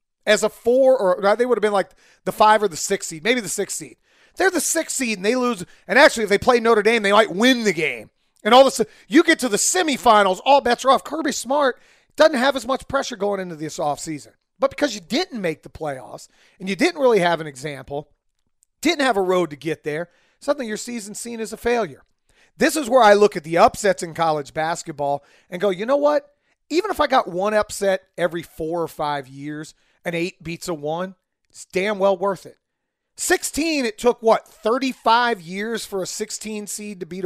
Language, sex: English, male